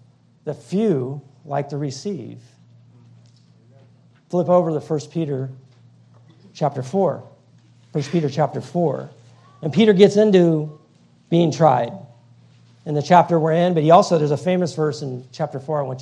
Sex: male